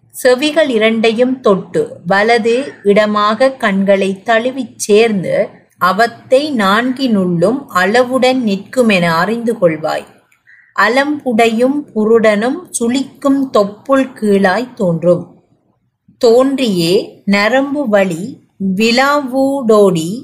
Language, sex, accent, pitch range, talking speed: Tamil, female, native, 205-260 Hz, 75 wpm